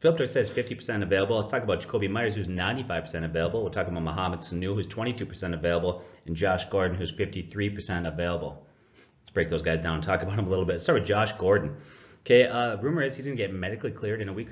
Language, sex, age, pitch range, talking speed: English, male, 30-49, 85-105 Hz, 230 wpm